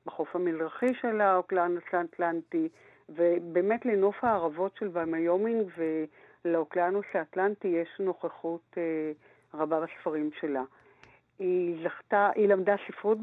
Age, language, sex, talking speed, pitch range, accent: 50-69, Hebrew, female, 105 wpm, 170-205 Hz, native